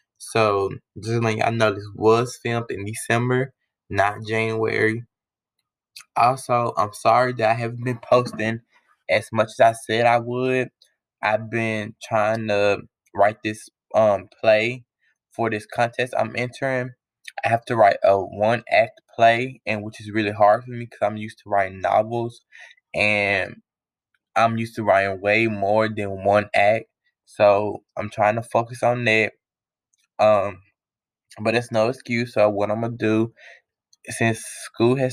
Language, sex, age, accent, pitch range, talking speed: English, male, 10-29, American, 110-125 Hz, 150 wpm